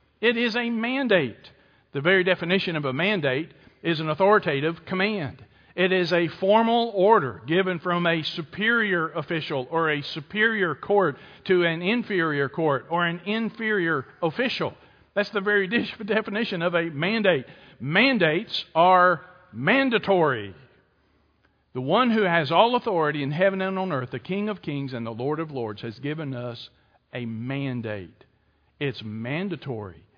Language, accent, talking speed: English, American, 145 wpm